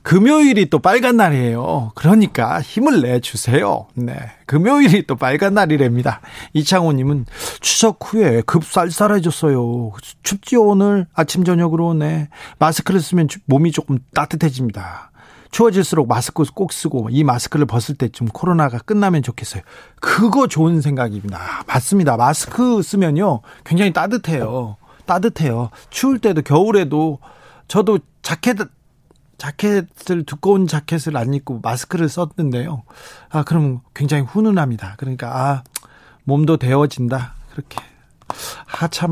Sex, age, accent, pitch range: male, 40-59, native, 130-180 Hz